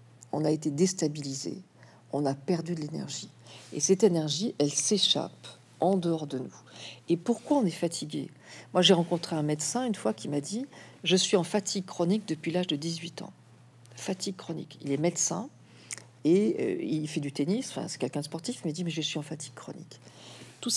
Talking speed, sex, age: 200 wpm, female, 50-69